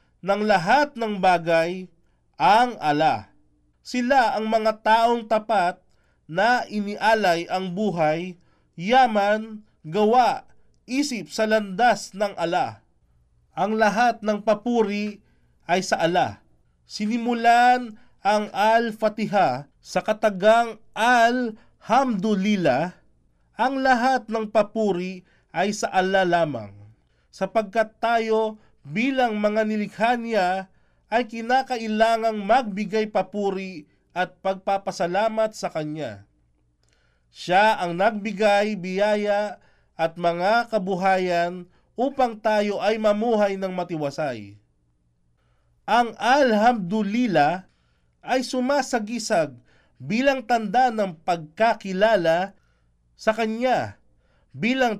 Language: Filipino